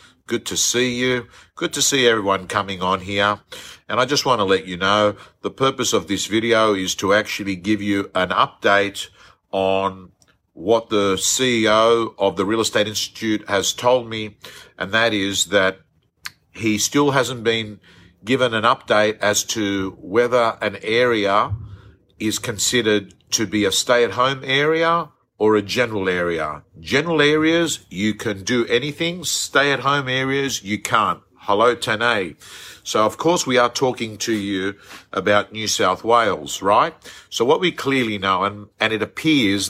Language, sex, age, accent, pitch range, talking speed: English, male, 50-69, Australian, 100-120 Hz, 155 wpm